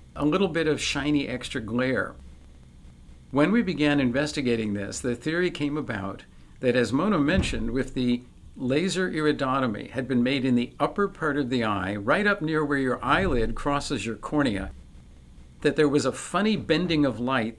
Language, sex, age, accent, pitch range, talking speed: English, male, 50-69, American, 115-155 Hz, 175 wpm